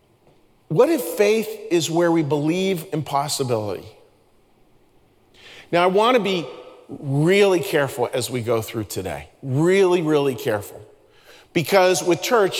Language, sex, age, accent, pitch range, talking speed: English, male, 40-59, American, 140-180 Hz, 125 wpm